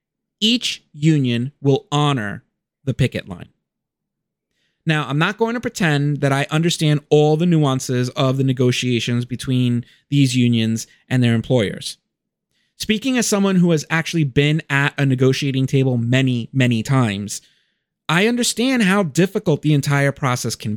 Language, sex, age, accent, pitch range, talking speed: English, male, 30-49, American, 130-190 Hz, 145 wpm